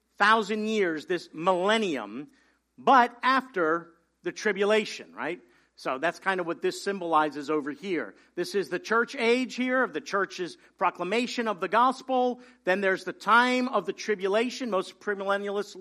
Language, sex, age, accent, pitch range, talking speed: English, male, 50-69, American, 185-235 Hz, 150 wpm